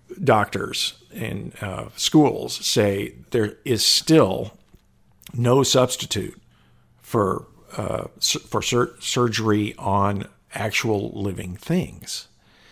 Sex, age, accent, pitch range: male, 50-69, American, 105-130 Hz